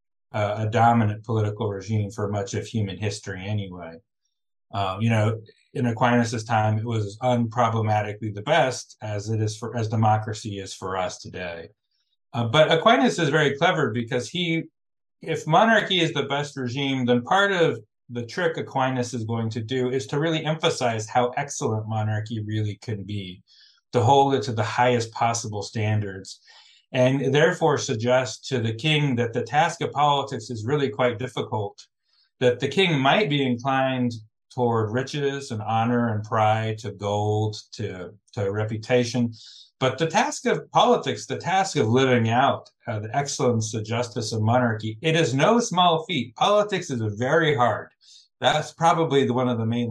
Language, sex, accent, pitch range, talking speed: English, male, American, 110-140 Hz, 165 wpm